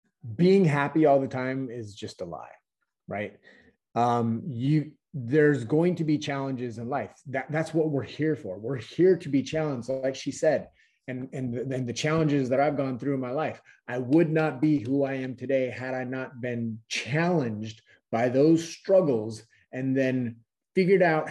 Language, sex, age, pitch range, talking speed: English, male, 30-49, 125-160 Hz, 185 wpm